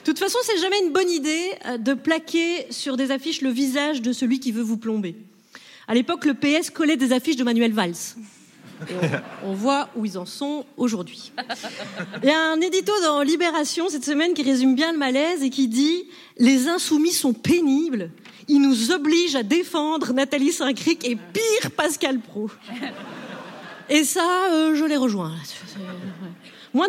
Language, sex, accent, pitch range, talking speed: French, female, French, 235-320 Hz, 175 wpm